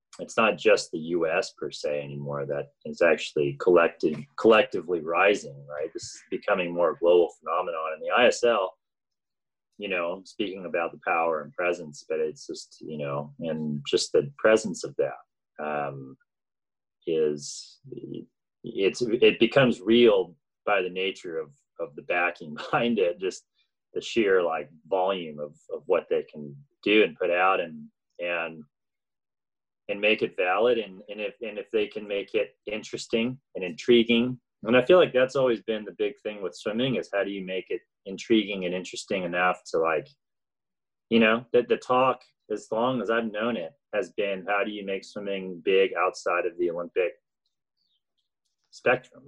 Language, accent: English, American